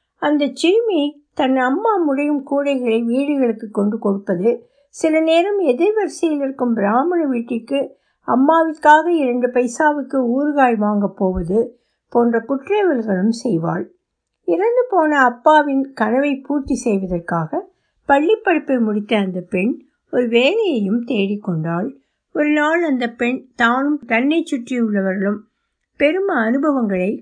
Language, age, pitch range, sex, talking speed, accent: Tamil, 60-79, 215-300 Hz, female, 100 wpm, native